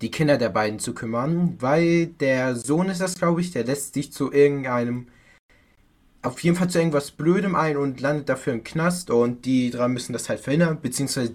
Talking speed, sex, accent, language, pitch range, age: 200 wpm, male, German, German, 125-160 Hz, 20-39